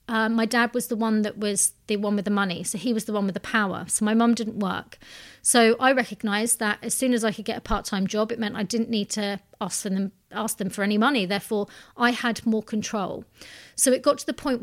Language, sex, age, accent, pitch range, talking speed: English, female, 30-49, British, 205-235 Hz, 255 wpm